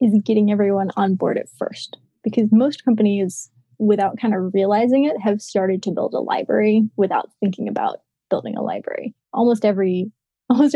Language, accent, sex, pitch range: English, American, female, 190-225 Hz